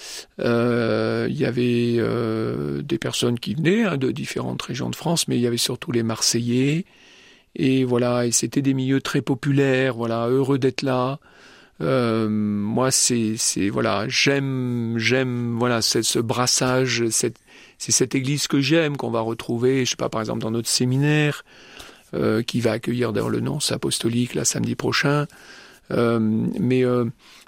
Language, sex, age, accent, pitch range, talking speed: French, male, 50-69, French, 120-140 Hz, 165 wpm